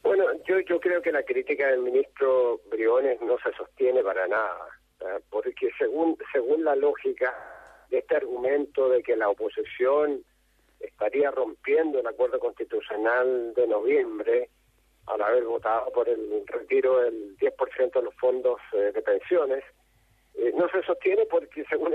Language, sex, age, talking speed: Spanish, male, 50-69, 140 wpm